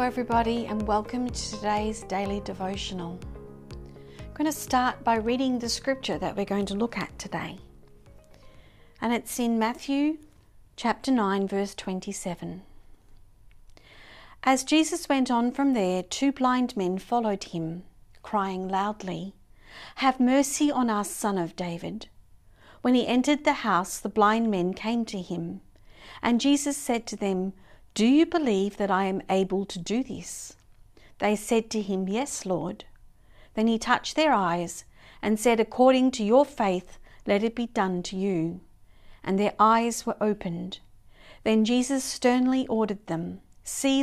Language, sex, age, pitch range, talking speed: English, female, 50-69, 170-235 Hz, 150 wpm